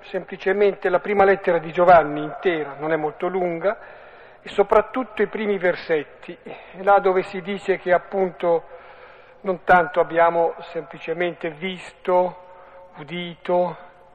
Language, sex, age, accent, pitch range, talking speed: Italian, male, 50-69, native, 160-190 Hz, 120 wpm